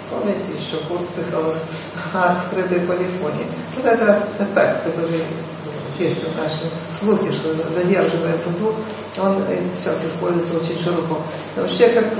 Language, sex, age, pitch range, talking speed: Ukrainian, female, 50-69, 170-220 Hz, 125 wpm